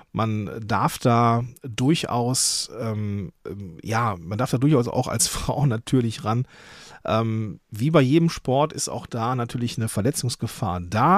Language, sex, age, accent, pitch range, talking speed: German, male, 40-59, German, 100-135 Hz, 145 wpm